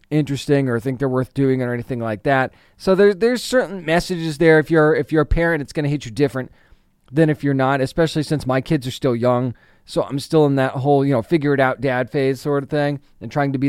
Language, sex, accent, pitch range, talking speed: English, male, American, 130-165 Hz, 260 wpm